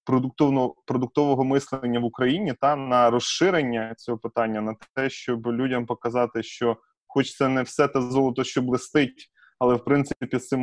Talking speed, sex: 160 wpm, male